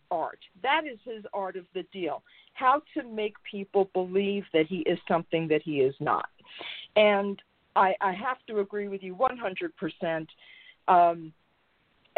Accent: American